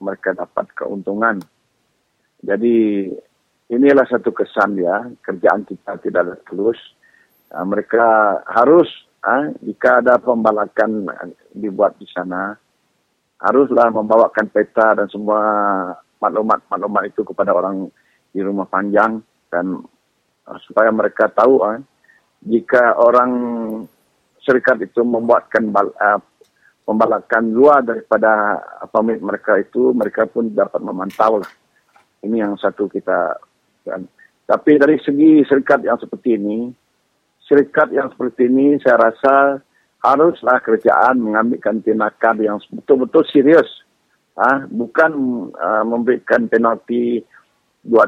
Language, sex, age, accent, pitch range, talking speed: English, male, 50-69, Indonesian, 105-125 Hz, 110 wpm